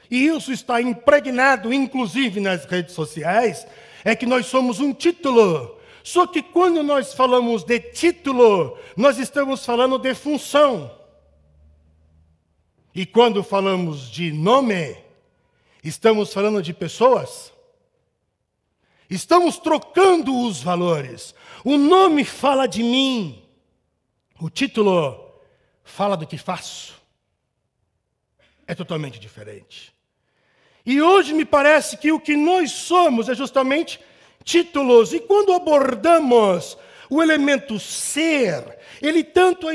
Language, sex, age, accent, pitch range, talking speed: Portuguese, male, 60-79, Brazilian, 195-310 Hz, 110 wpm